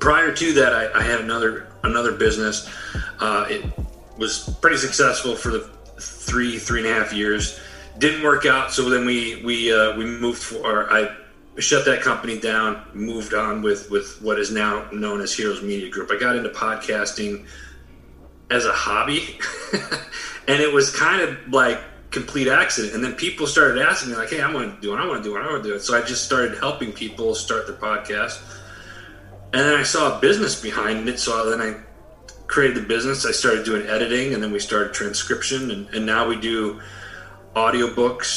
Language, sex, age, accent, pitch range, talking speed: English, male, 30-49, American, 105-120 Hz, 200 wpm